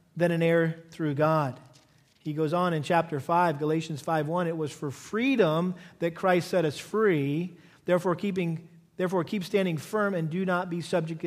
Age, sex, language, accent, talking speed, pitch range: 40-59, male, English, American, 175 wpm, 165-210 Hz